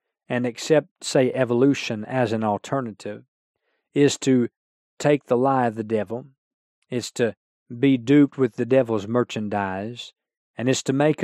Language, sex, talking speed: English, male, 145 wpm